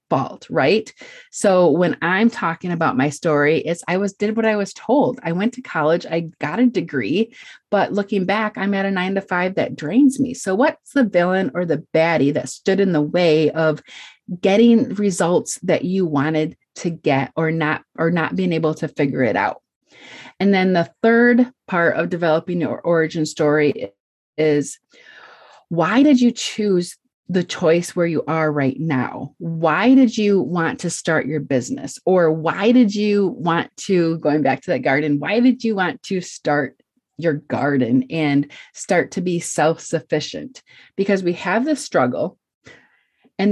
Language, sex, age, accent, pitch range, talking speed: English, female, 30-49, American, 155-215 Hz, 175 wpm